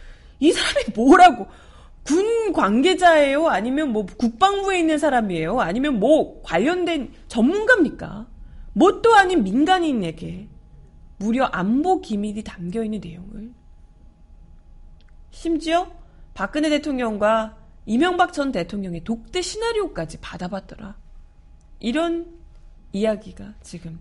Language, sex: Korean, female